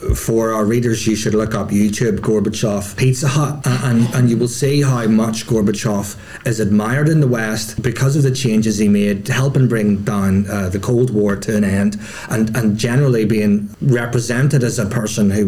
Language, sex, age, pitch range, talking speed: English, male, 30-49, 110-140 Hz, 200 wpm